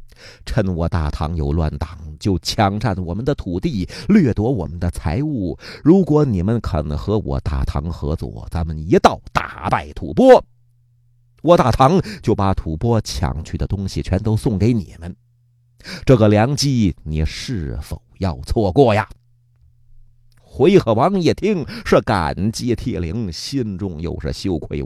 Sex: male